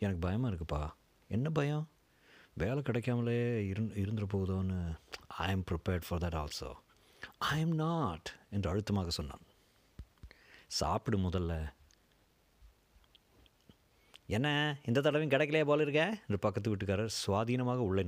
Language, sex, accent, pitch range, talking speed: Tamil, male, native, 95-125 Hz, 105 wpm